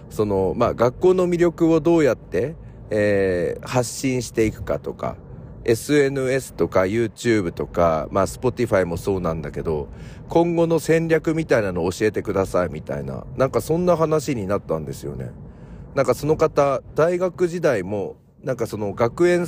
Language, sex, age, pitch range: Japanese, male, 40-59, 95-140 Hz